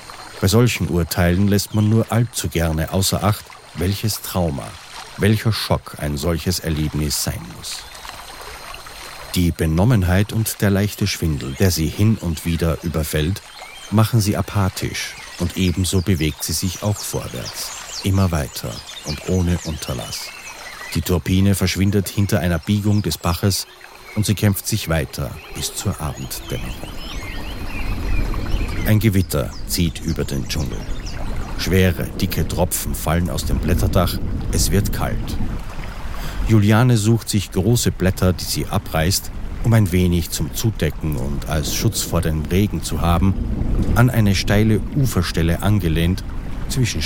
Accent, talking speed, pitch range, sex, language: German, 135 wpm, 80-105 Hz, male, German